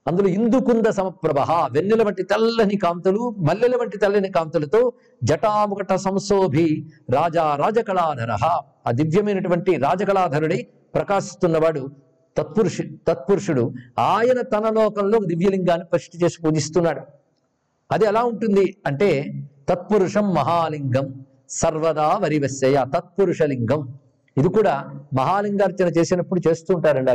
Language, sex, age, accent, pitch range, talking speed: Telugu, male, 50-69, native, 150-205 Hz, 90 wpm